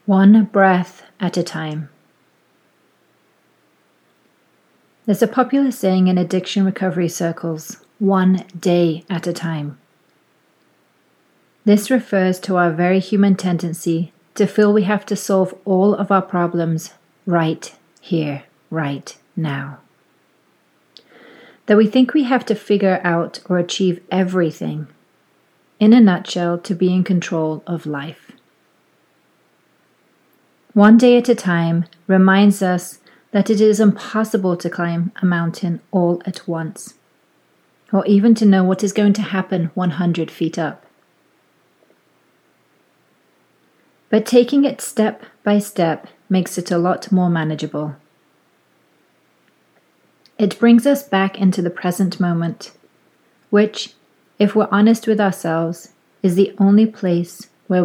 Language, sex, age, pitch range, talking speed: English, female, 30-49, 170-205 Hz, 125 wpm